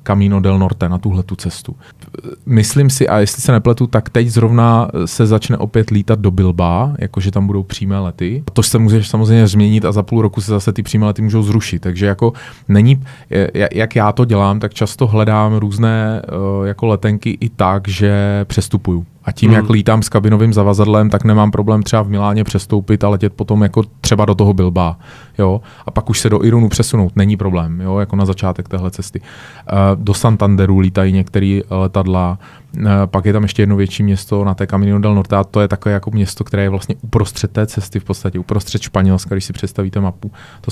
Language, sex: Czech, male